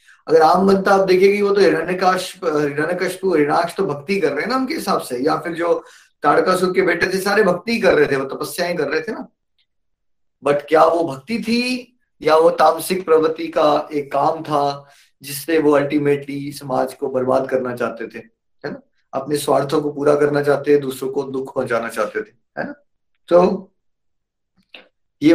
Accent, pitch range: native, 140-195 Hz